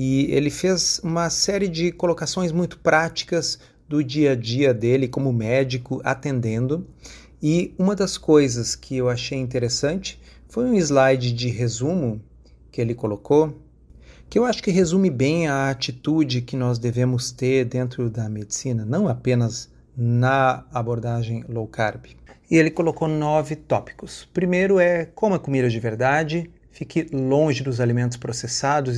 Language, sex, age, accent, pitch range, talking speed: Portuguese, male, 40-59, Brazilian, 120-155 Hz, 145 wpm